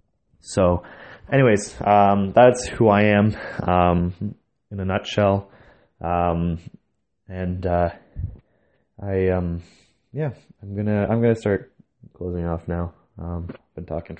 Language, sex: English, male